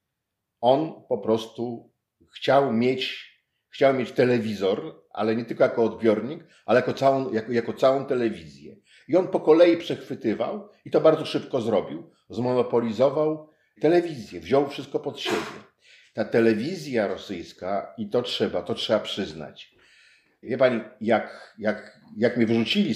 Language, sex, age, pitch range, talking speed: Polish, male, 50-69, 110-140 Hz, 135 wpm